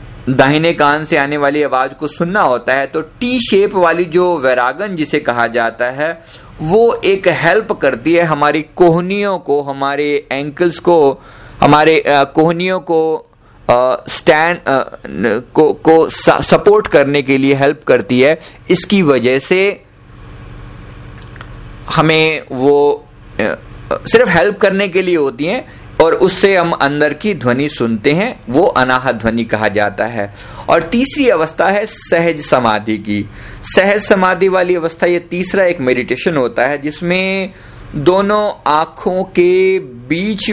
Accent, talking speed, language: native, 135 wpm, Hindi